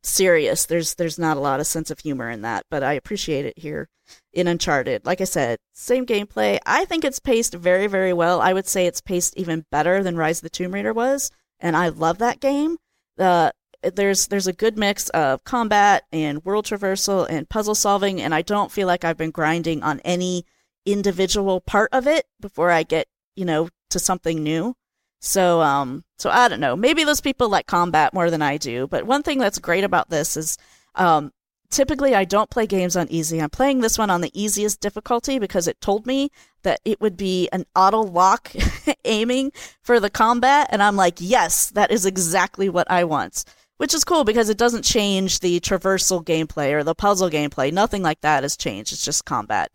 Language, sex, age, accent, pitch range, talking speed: English, female, 40-59, American, 170-220 Hz, 205 wpm